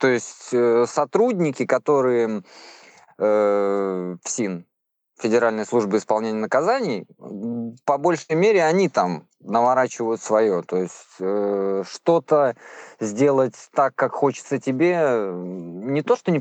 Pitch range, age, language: 110-145 Hz, 20-39, Russian